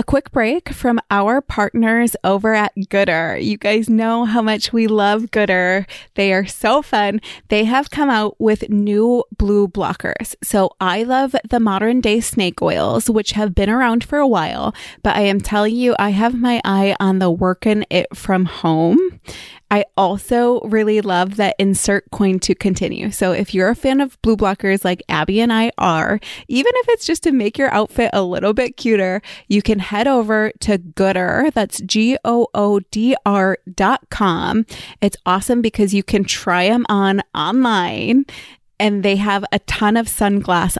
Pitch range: 195-230 Hz